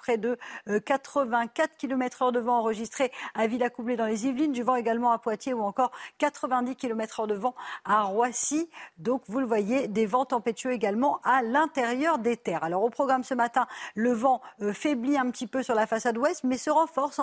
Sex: female